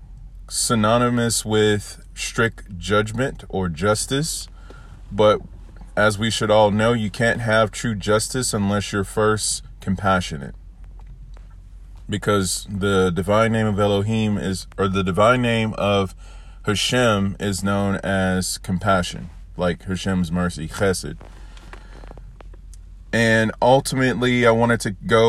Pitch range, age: 95-120 Hz, 30-49